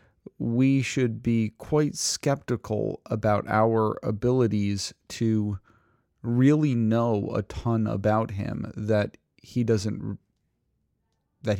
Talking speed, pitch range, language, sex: 100 wpm, 105-120 Hz, English, male